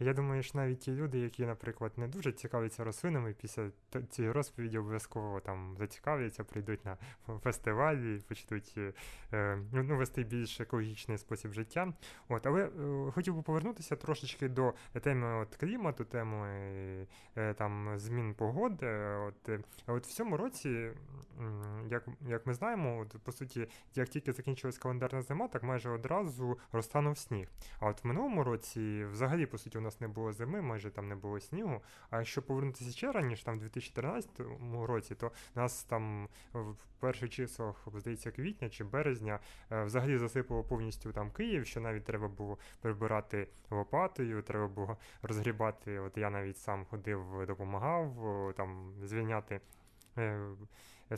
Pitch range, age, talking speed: 105-130 Hz, 20-39, 150 wpm